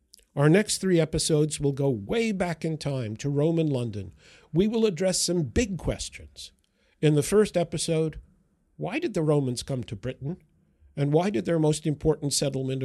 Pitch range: 130-175 Hz